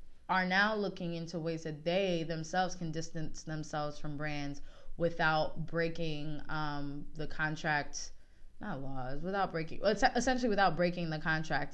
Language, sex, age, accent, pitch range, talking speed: English, female, 20-39, American, 145-170 Hz, 140 wpm